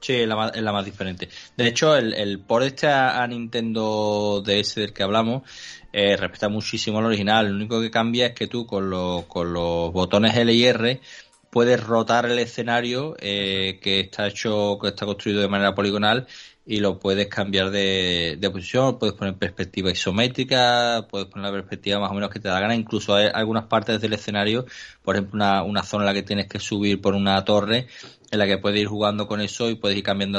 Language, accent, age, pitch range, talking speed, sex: Spanish, Spanish, 20-39, 100-115 Hz, 205 wpm, male